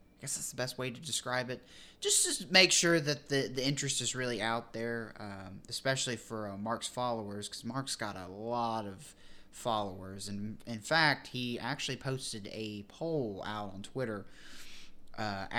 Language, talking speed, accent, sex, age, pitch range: English, 175 wpm, American, male, 20-39, 100-130 Hz